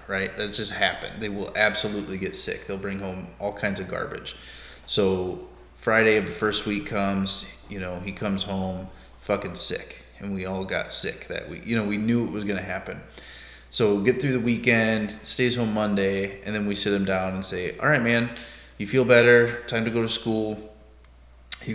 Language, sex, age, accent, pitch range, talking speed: English, male, 20-39, American, 95-115 Hz, 205 wpm